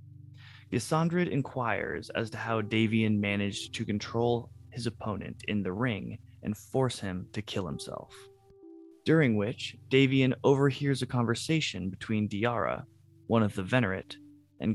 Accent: American